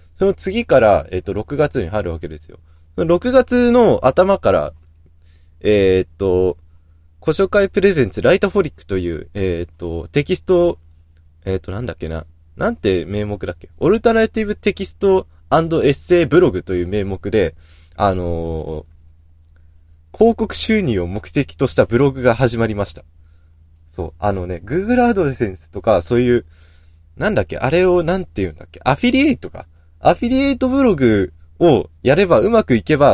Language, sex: Japanese, male